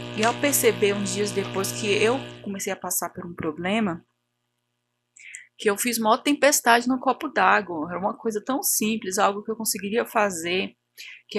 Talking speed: 175 wpm